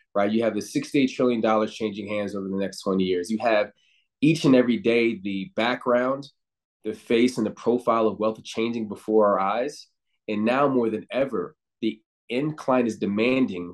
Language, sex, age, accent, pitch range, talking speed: English, male, 20-39, American, 110-130 Hz, 180 wpm